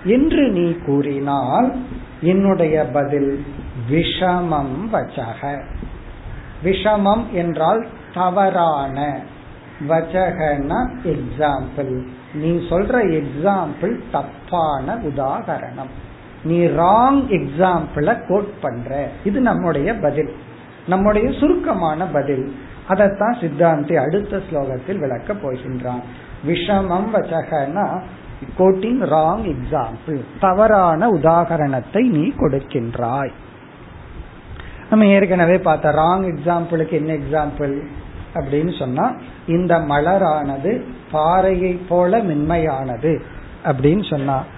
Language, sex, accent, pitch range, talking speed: Tamil, male, native, 145-195 Hz, 40 wpm